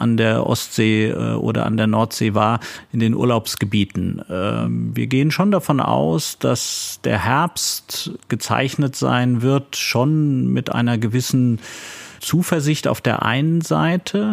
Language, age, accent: German, 40-59, German